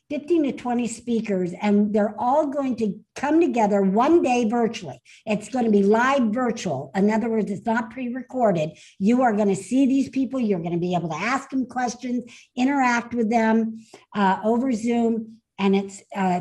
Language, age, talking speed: English, 60-79, 190 wpm